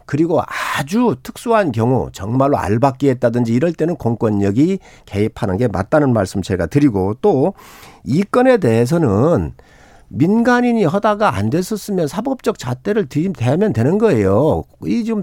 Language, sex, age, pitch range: Korean, male, 50-69, 140-220 Hz